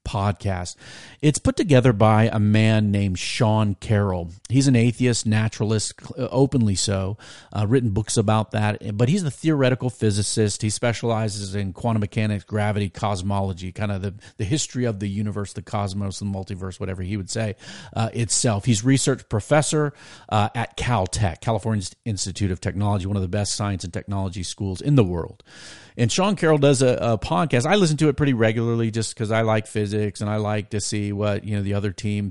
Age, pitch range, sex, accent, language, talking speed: 40-59, 100-125 Hz, male, American, English, 185 wpm